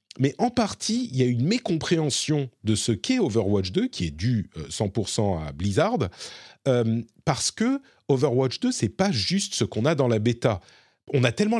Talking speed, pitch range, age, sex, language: 190 wpm, 105-160 Hz, 40-59, male, French